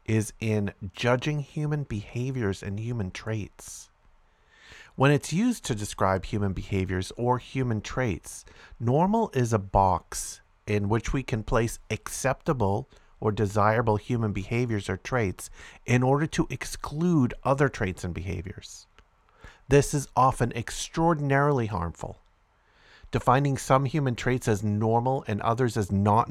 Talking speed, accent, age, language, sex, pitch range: 130 wpm, American, 50-69, English, male, 95-130 Hz